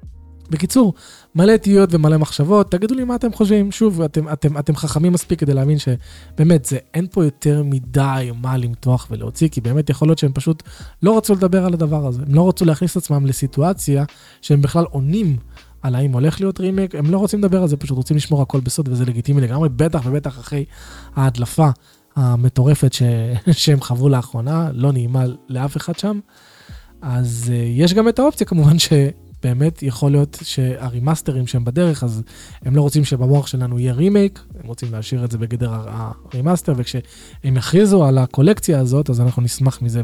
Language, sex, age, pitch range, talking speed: Hebrew, male, 20-39, 125-165 Hz, 170 wpm